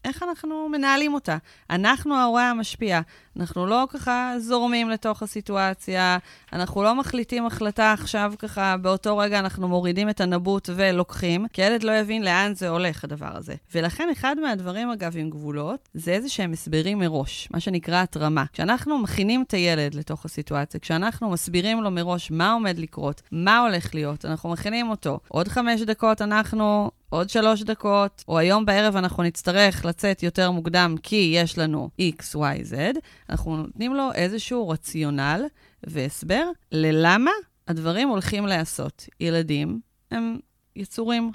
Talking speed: 145 wpm